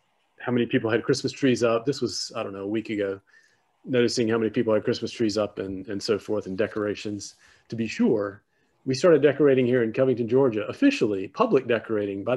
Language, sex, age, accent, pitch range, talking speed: English, male, 40-59, American, 110-135 Hz, 210 wpm